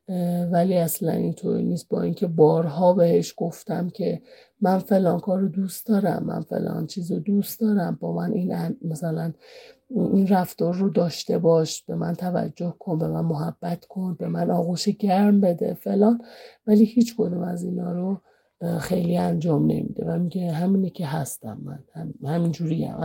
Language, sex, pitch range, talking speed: Persian, male, 170-205 Hz, 150 wpm